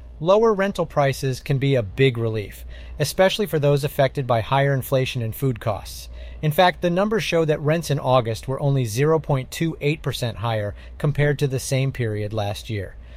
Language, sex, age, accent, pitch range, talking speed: English, male, 30-49, American, 115-160 Hz, 175 wpm